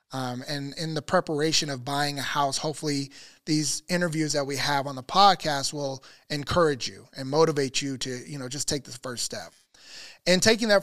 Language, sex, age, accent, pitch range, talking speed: English, male, 20-39, American, 140-165 Hz, 195 wpm